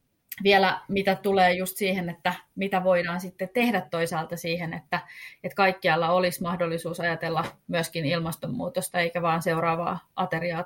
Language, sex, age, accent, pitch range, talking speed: Finnish, female, 30-49, native, 165-190 Hz, 135 wpm